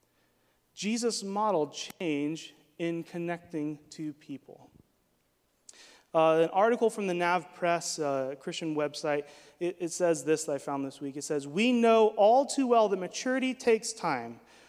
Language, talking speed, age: English, 150 wpm, 30-49